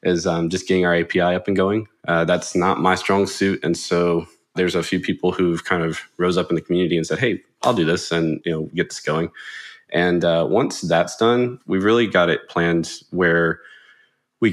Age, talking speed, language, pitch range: 20-39, 220 wpm, English, 80-90 Hz